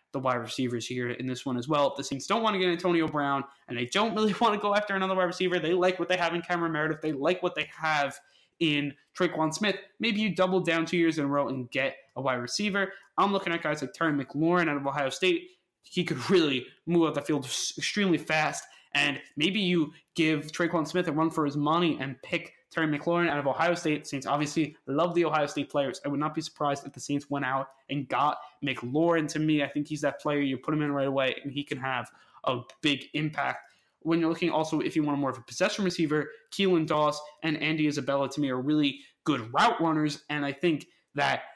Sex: male